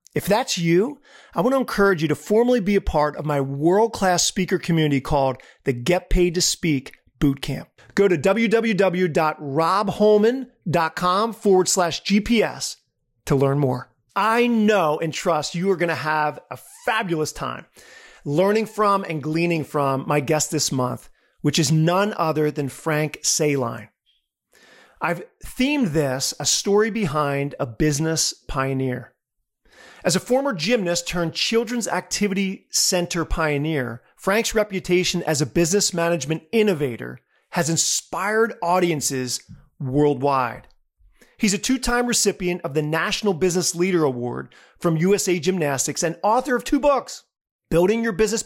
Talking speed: 140 wpm